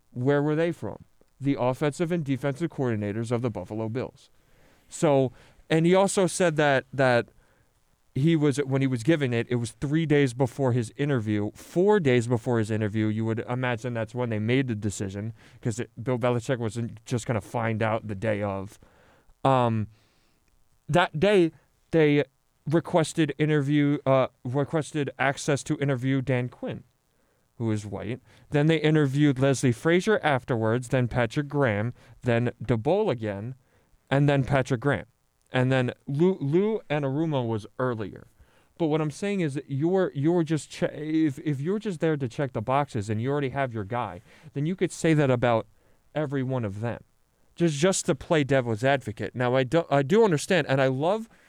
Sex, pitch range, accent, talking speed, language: male, 120-155 Hz, American, 175 wpm, English